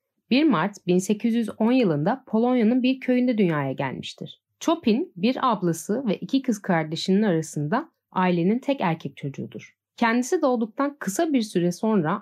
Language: Turkish